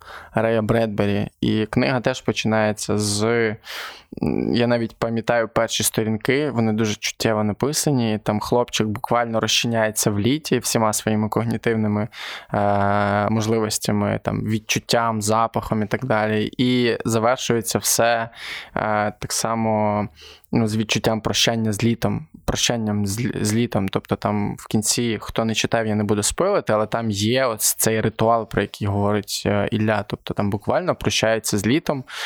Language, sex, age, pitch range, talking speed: Ukrainian, male, 20-39, 105-115 Hz, 145 wpm